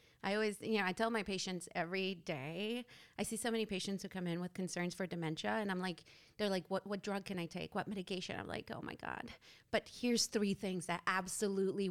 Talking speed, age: 230 wpm, 30-49